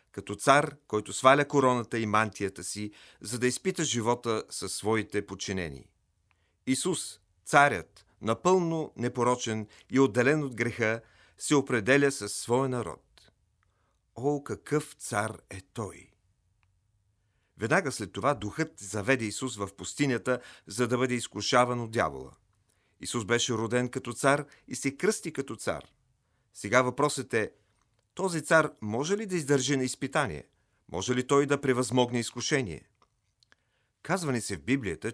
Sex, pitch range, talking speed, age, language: male, 105-135 Hz, 135 wpm, 40-59, Bulgarian